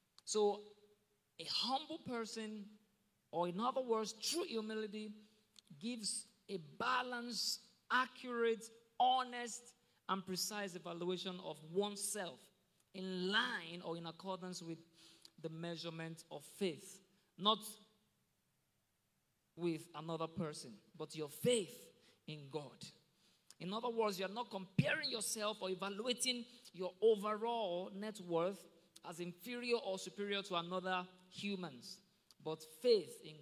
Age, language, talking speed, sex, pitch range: 50-69, English, 110 wpm, male, 180-220 Hz